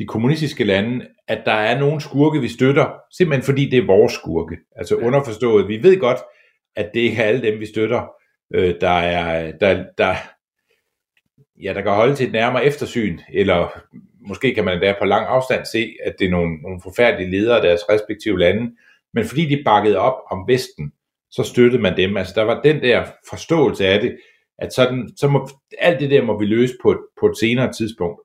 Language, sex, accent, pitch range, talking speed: Danish, male, native, 95-140 Hz, 200 wpm